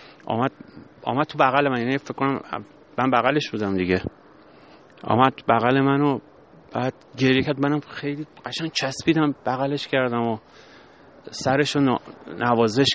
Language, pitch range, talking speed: Persian, 115-145 Hz, 120 wpm